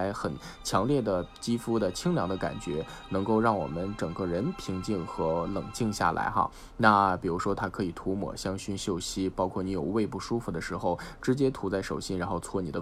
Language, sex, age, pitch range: Chinese, male, 20-39, 90-115 Hz